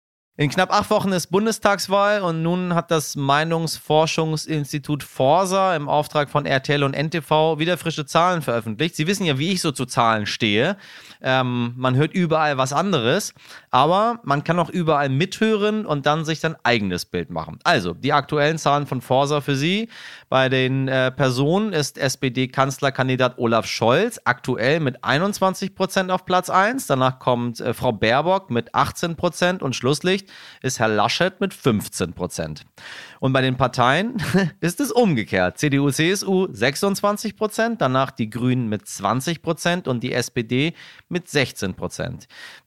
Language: German